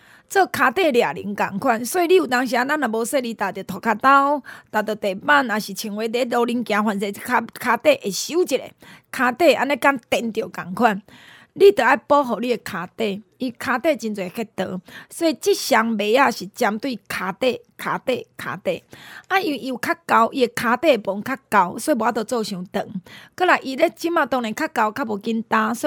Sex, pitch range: female, 210-270 Hz